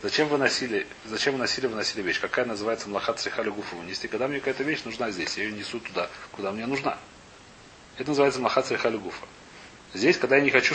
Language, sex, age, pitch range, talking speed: Russian, male, 30-49, 130-170 Hz, 185 wpm